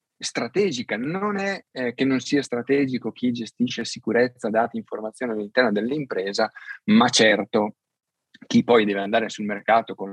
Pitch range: 110-155 Hz